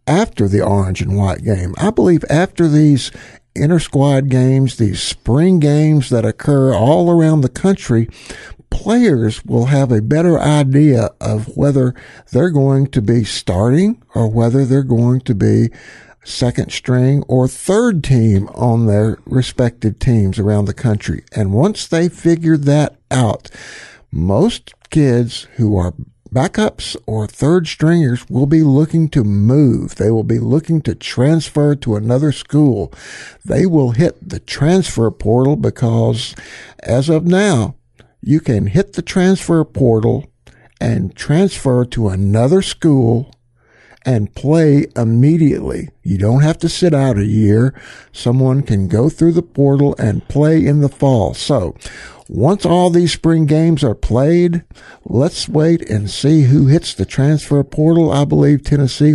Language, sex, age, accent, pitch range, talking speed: English, male, 60-79, American, 115-155 Hz, 145 wpm